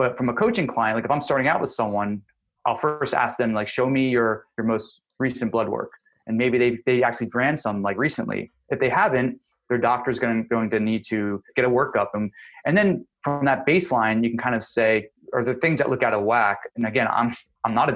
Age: 20-39